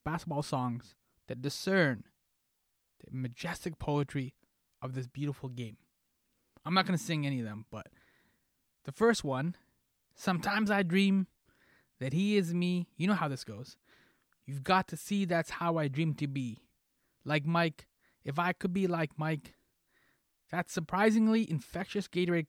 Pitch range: 135-180 Hz